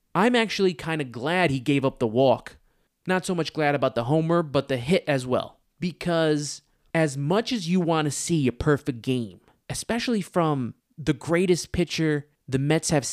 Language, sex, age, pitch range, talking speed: English, male, 20-39, 130-165 Hz, 185 wpm